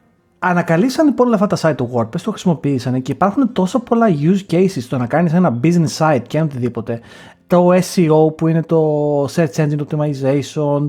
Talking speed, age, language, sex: 165 wpm, 30-49, Greek, male